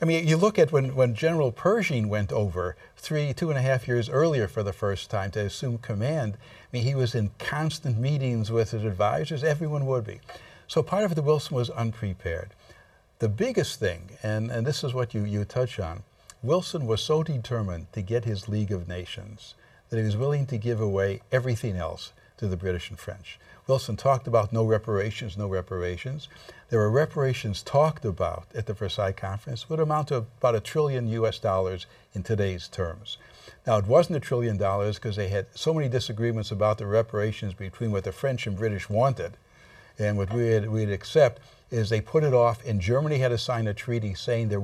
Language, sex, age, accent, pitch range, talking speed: English, male, 60-79, American, 105-130 Hz, 205 wpm